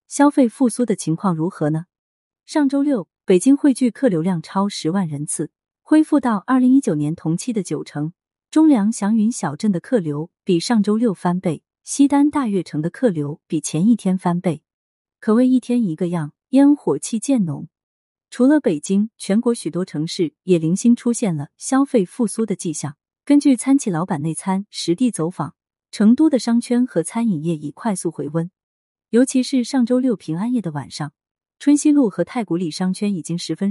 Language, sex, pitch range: Chinese, female, 165-245 Hz